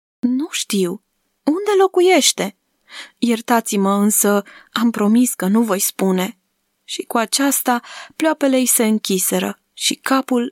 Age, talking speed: 20-39, 115 wpm